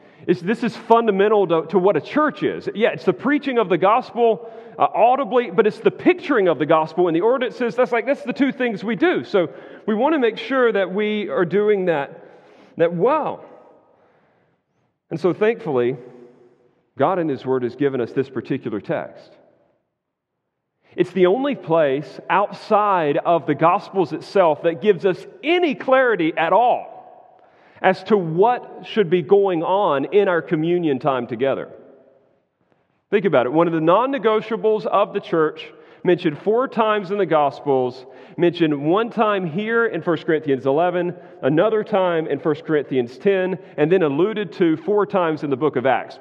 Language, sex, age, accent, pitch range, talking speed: English, male, 40-59, American, 160-225 Hz, 170 wpm